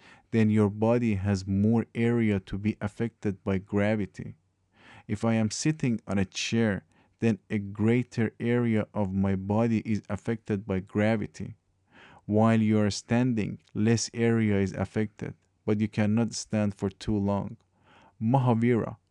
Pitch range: 100-115 Hz